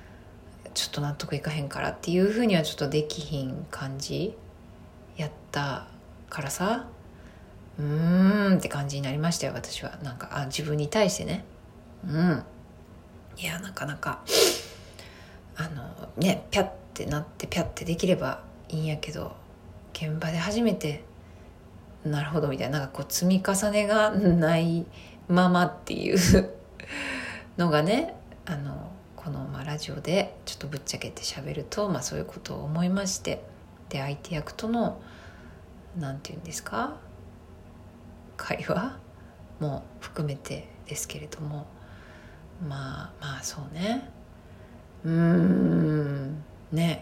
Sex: female